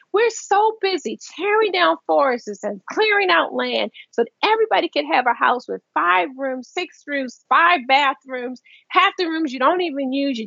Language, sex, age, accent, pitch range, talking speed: English, female, 40-59, American, 230-345 Hz, 185 wpm